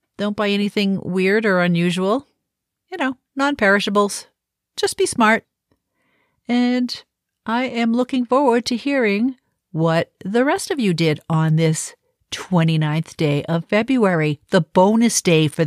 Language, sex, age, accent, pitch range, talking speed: English, female, 50-69, American, 150-205 Hz, 135 wpm